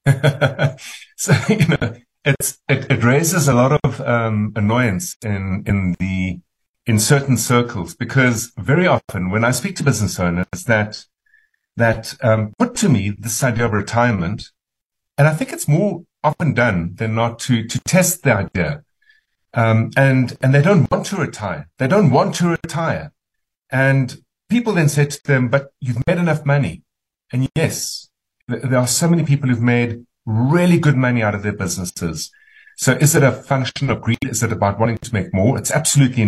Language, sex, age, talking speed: English, male, 50-69, 175 wpm